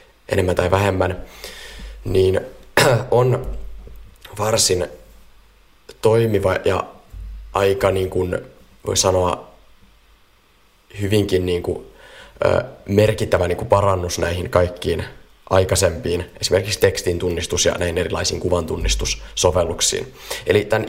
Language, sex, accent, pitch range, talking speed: Finnish, male, native, 90-125 Hz, 90 wpm